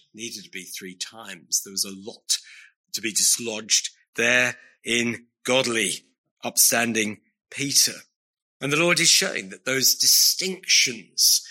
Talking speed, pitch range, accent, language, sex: 130 wpm, 115-165 Hz, British, English, male